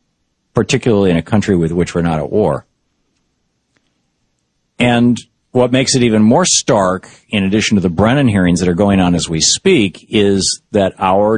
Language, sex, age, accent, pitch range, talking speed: English, male, 50-69, American, 90-120 Hz, 175 wpm